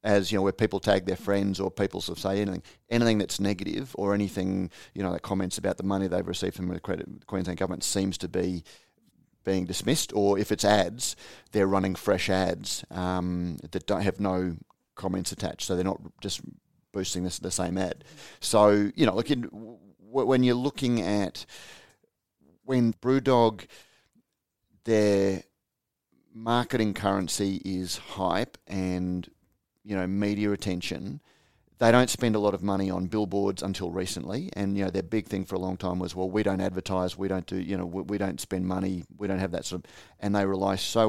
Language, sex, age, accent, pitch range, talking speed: English, male, 30-49, Australian, 95-105 Hz, 185 wpm